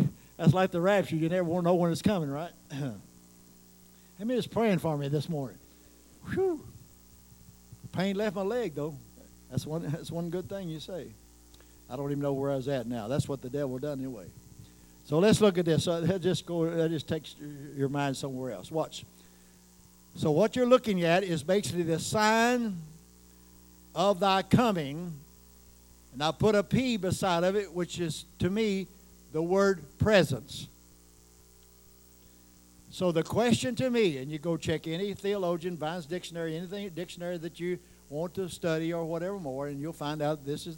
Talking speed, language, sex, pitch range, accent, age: 180 wpm, English, male, 125-175 Hz, American, 60-79